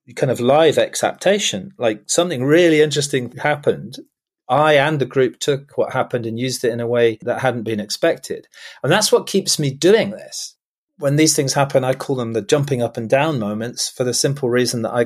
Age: 30-49